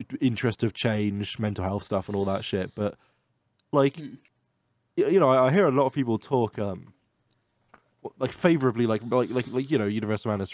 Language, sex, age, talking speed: English, male, 20-39, 180 wpm